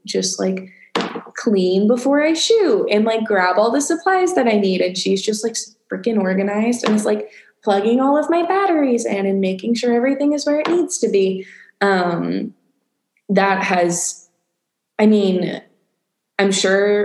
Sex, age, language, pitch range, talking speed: female, 20-39, English, 185-235 Hz, 165 wpm